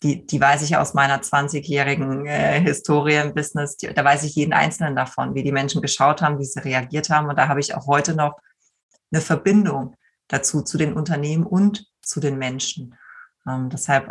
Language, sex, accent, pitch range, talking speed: German, female, German, 145-175 Hz, 190 wpm